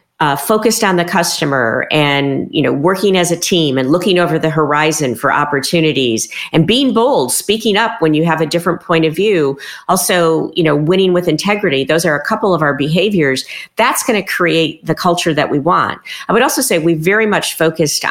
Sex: female